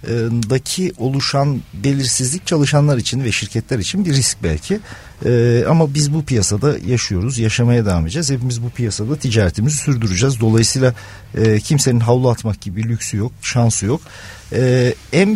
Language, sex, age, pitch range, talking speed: Turkish, male, 50-69, 115-155 Hz, 150 wpm